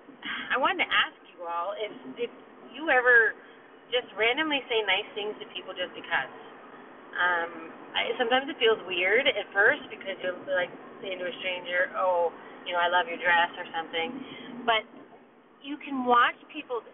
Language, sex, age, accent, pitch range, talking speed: English, female, 30-49, American, 170-245 Hz, 170 wpm